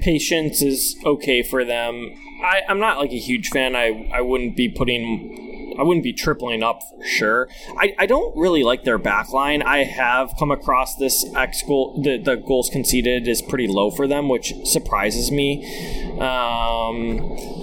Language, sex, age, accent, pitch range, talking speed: English, male, 20-39, American, 110-140 Hz, 165 wpm